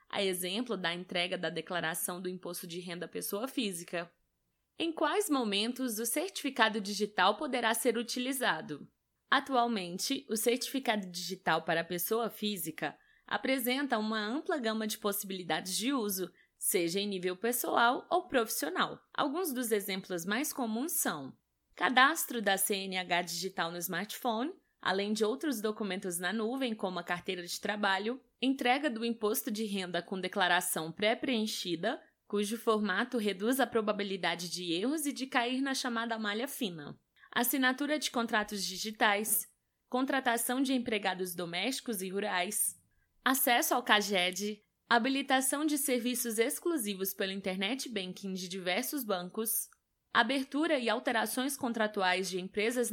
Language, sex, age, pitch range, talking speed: Portuguese, female, 20-39, 190-255 Hz, 135 wpm